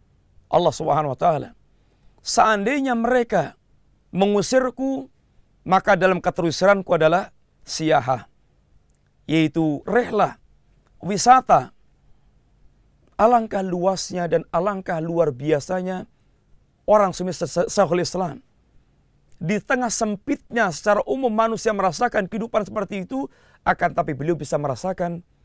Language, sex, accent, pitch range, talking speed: Indonesian, male, native, 150-200 Hz, 95 wpm